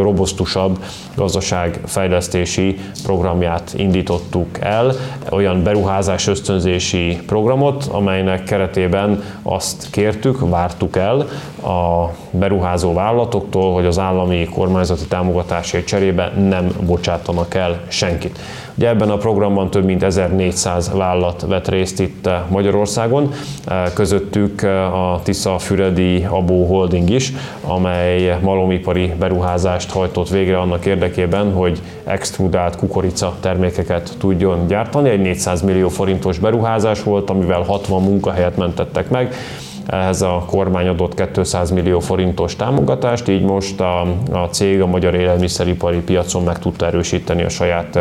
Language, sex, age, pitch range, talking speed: Hungarian, male, 20-39, 90-100 Hz, 115 wpm